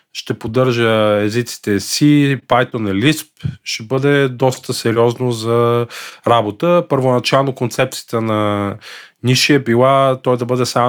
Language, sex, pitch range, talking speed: Bulgarian, male, 110-135 Hz, 125 wpm